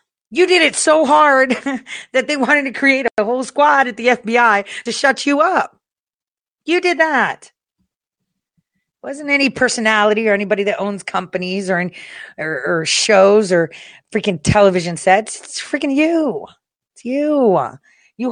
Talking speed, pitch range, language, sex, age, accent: 150 wpm, 165-250 Hz, English, female, 40-59, American